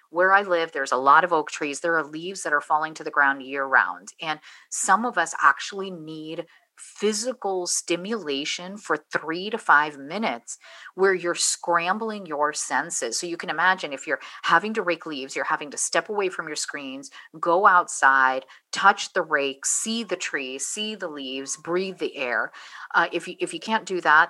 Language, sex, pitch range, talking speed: English, female, 150-185 Hz, 190 wpm